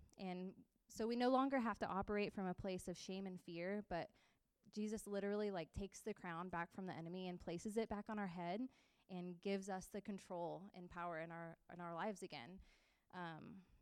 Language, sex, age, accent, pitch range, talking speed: English, female, 20-39, American, 180-215 Hz, 205 wpm